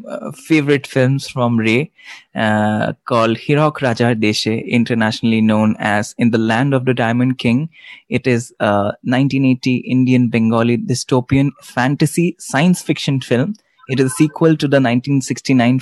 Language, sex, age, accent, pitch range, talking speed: English, male, 20-39, Indian, 120-145 Hz, 145 wpm